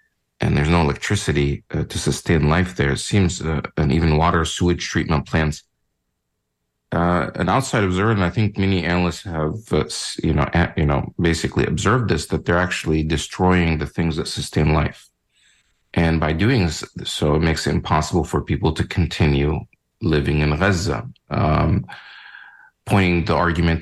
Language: English